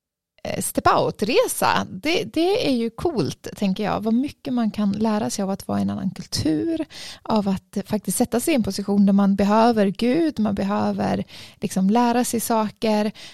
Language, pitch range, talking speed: English, 200-235 Hz, 180 wpm